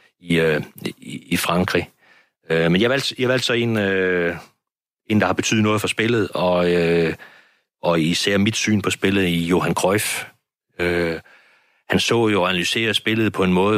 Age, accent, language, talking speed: 30-49, native, Danish, 180 wpm